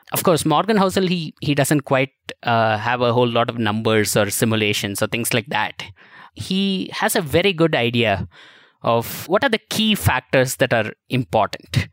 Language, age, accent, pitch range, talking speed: English, 20-39, Indian, 115-150 Hz, 180 wpm